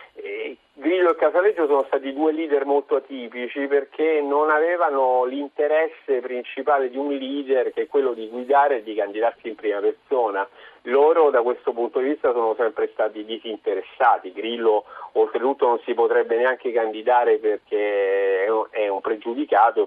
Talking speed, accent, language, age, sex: 140 wpm, native, Italian, 40-59, male